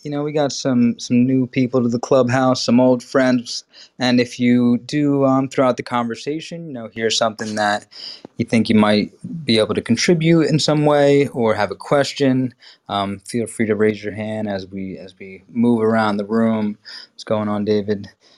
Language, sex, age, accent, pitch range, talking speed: English, male, 20-39, American, 110-130 Hz, 200 wpm